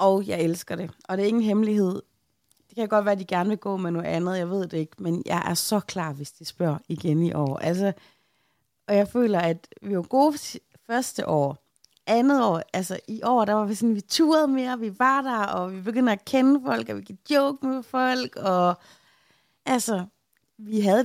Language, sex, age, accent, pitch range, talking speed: Danish, female, 30-49, native, 180-235 Hz, 220 wpm